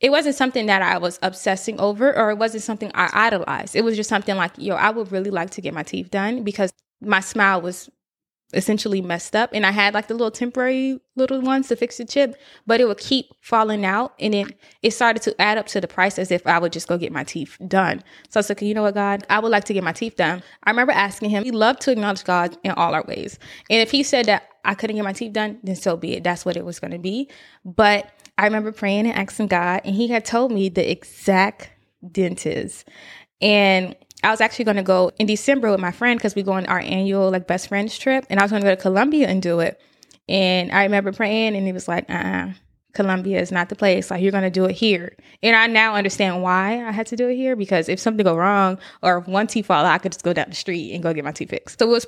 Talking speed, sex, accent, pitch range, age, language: 270 wpm, female, American, 185-225 Hz, 20-39, English